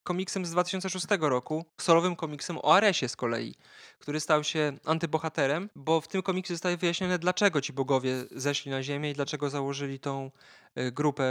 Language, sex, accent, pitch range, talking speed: Polish, male, native, 135-155 Hz, 165 wpm